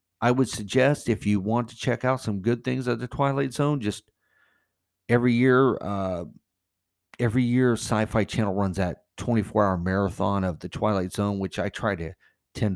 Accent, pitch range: American, 95-120 Hz